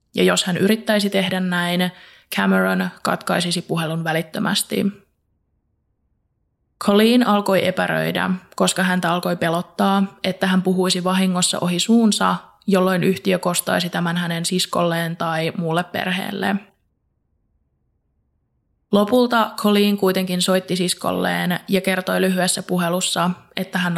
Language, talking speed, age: Finnish, 110 wpm, 20-39